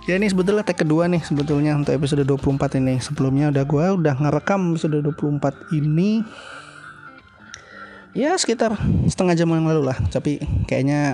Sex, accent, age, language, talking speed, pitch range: male, native, 20-39, Indonesian, 150 wpm, 130-155 Hz